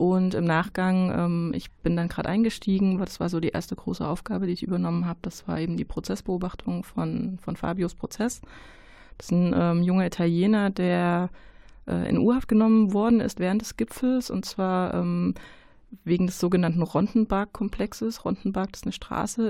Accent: German